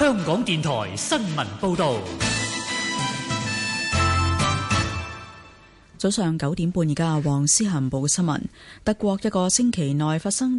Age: 30-49